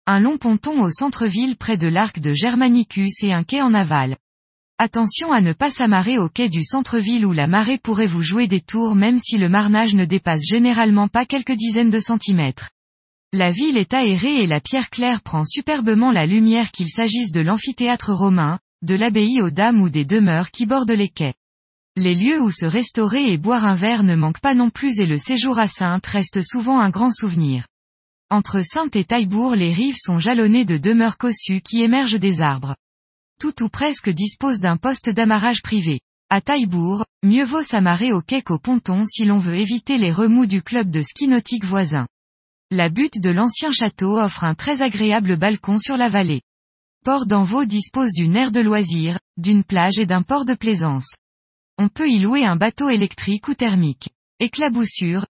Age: 20-39